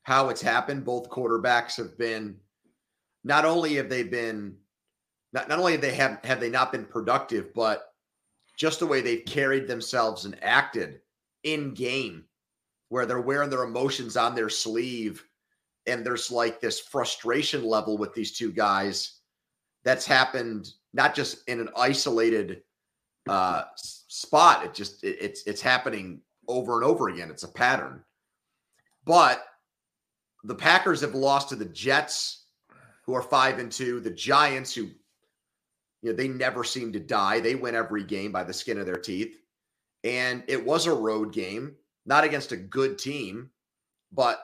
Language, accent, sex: English, American, male